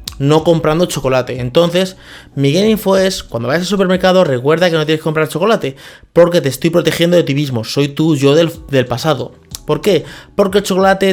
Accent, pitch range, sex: Spanish, 135-175 Hz, male